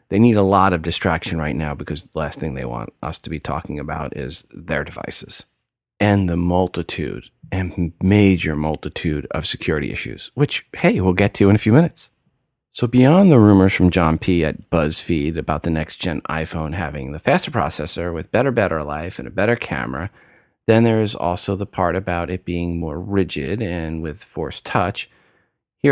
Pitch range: 80-105 Hz